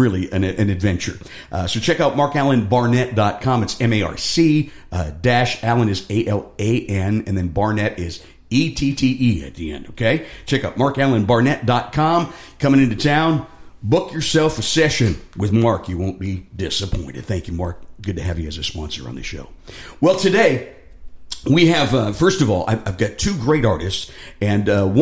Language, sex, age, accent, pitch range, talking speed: English, male, 50-69, American, 100-130 Hz, 165 wpm